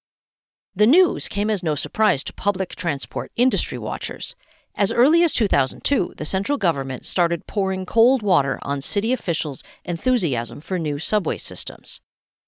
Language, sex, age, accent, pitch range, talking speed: English, female, 50-69, American, 165-250 Hz, 145 wpm